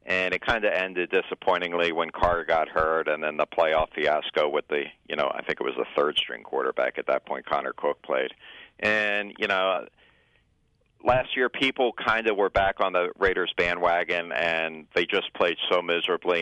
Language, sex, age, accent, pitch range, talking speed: English, male, 50-69, American, 80-110 Hz, 190 wpm